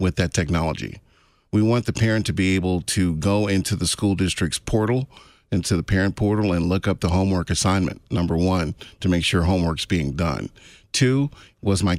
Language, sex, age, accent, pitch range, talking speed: English, male, 40-59, American, 90-115 Hz, 190 wpm